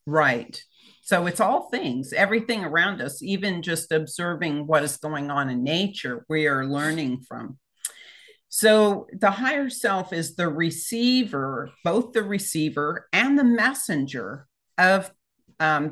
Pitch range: 150-195 Hz